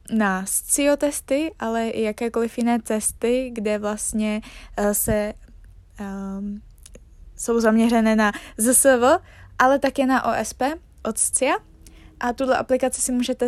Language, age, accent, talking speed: Czech, 20-39, native, 120 wpm